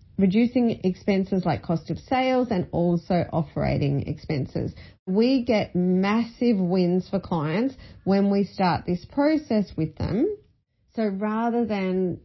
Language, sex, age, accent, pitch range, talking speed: English, female, 30-49, Australian, 175-230 Hz, 125 wpm